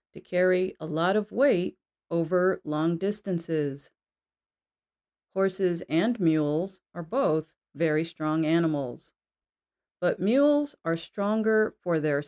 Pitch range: 155-205 Hz